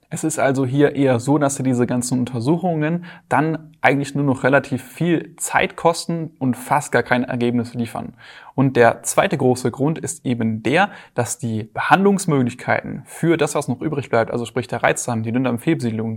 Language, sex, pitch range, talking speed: German, male, 120-150 Hz, 175 wpm